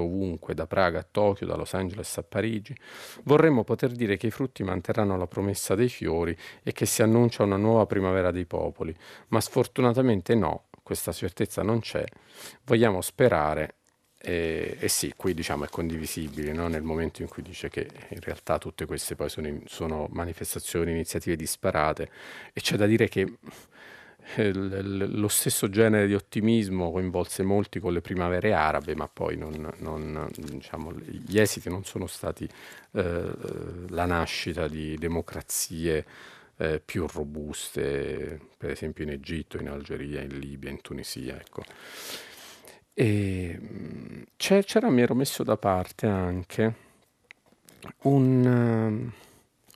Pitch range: 80-110 Hz